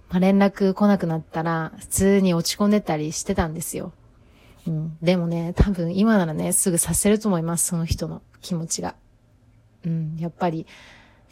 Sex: female